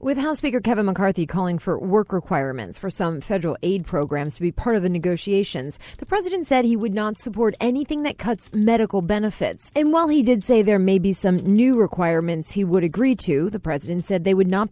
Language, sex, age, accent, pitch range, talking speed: English, female, 30-49, American, 110-175 Hz, 215 wpm